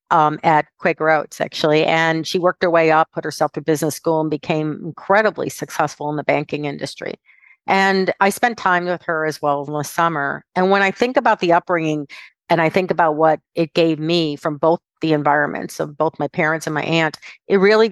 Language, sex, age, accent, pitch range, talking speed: English, female, 50-69, American, 150-170 Hz, 210 wpm